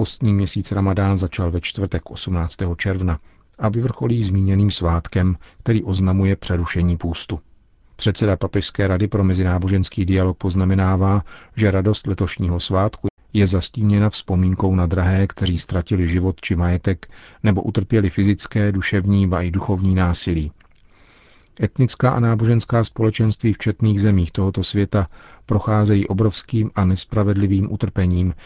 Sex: male